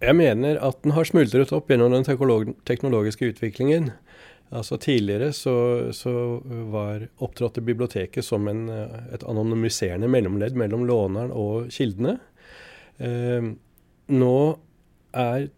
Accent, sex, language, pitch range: Swedish, male, English, 110-130 Hz